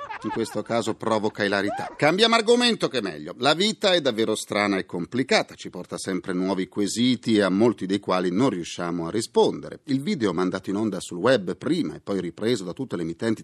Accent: native